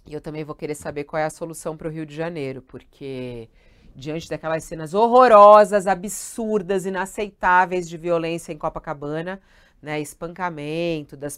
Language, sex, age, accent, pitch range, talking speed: Portuguese, female, 40-59, Brazilian, 150-195 Hz, 155 wpm